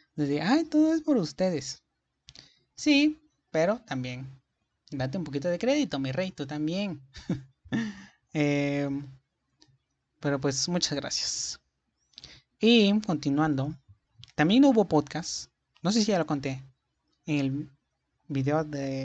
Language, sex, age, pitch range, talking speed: Spanish, male, 30-49, 135-170 Hz, 120 wpm